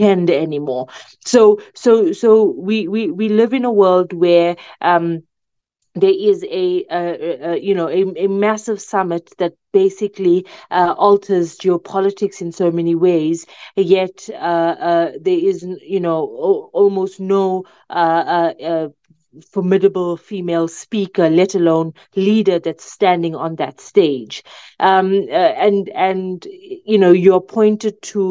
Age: 30-49